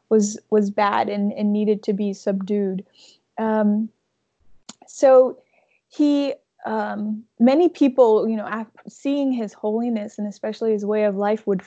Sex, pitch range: female, 210-240 Hz